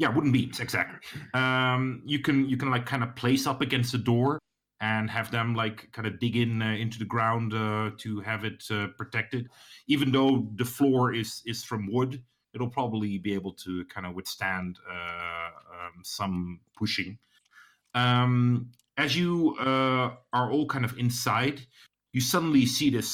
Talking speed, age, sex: 175 wpm, 30-49, male